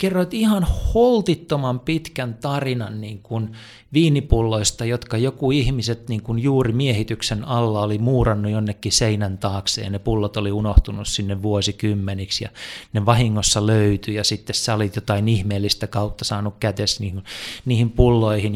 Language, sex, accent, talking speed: Finnish, male, native, 140 wpm